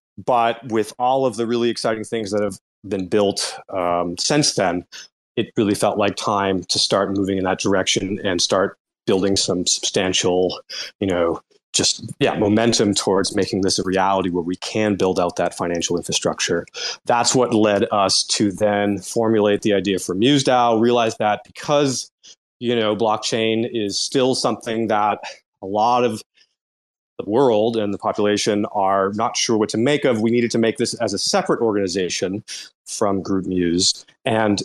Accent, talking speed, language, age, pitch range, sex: American, 170 wpm, English, 30-49, 100-120 Hz, male